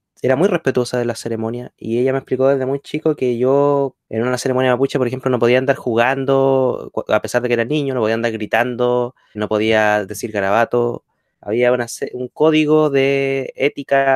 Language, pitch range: Spanish, 120-155 Hz